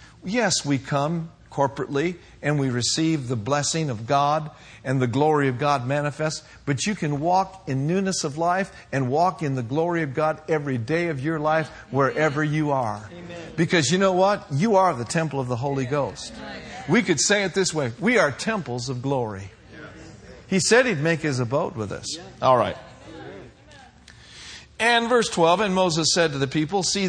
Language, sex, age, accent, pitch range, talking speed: English, male, 50-69, American, 140-190 Hz, 185 wpm